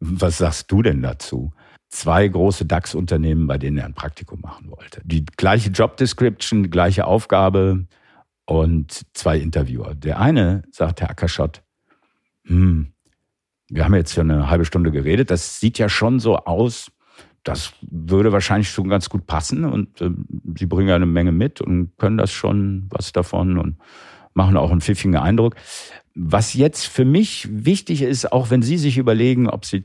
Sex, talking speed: male, 170 wpm